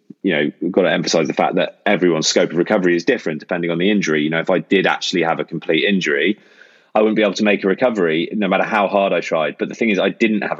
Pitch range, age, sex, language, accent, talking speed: 85-100 Hz, 20-39, male, English, British, 285 wpm